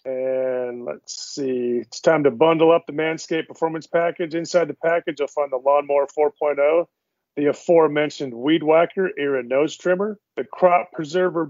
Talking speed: 155 wpm